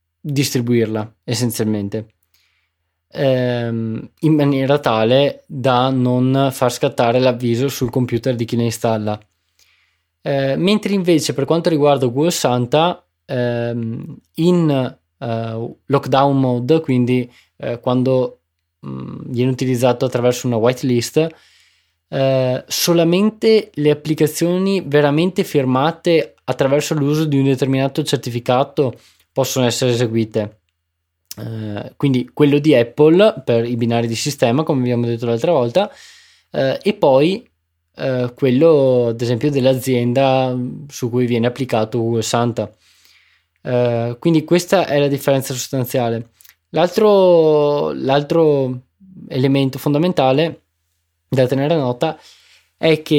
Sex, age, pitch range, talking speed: male, 20-39, 115-145 Hz, 105 wpm